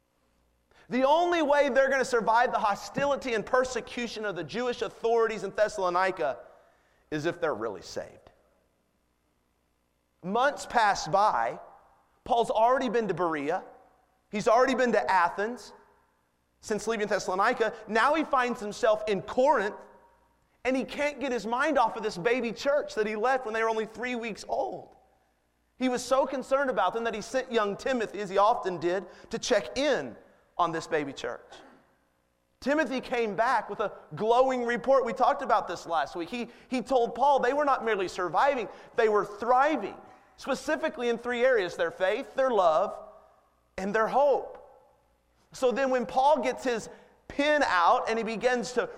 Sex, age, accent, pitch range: male, 30-49, American, 205-260 Hz